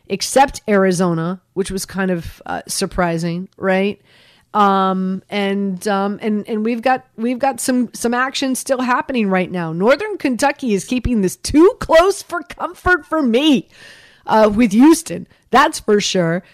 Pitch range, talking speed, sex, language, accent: 195-250 Hz, 150 wpm, female, English, American